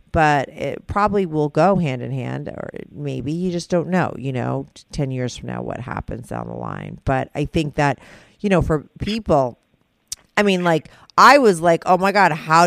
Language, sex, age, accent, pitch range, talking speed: English, female, 40-59, American, 135-165 Hz, 205 wpm